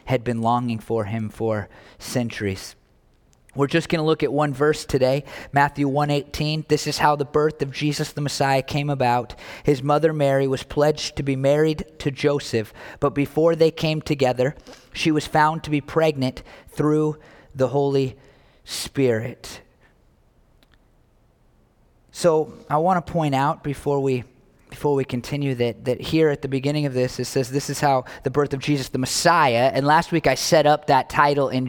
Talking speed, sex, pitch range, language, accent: 170 wpm, male, 135-170 Hz, English, American